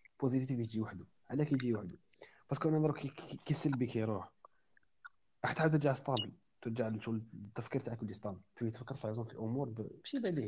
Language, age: Arabic, 30-49